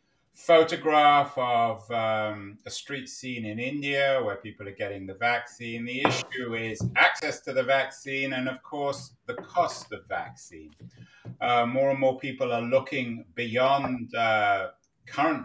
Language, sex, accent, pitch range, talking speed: English, male, British, 110-130 Hz, 150 wpm